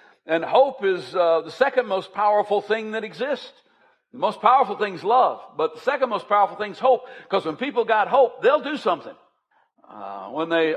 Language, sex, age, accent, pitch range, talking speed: English, male, 60-79, American, 170-250 Hz, 200 wpm